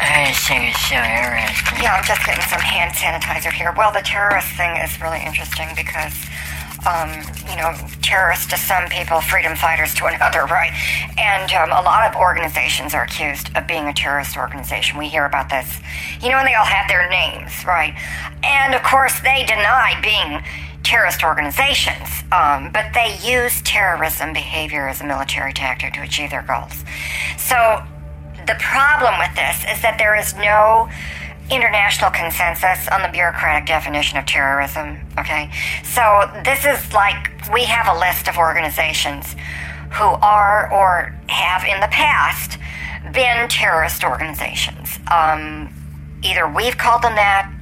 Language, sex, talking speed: English, male, 150 wpm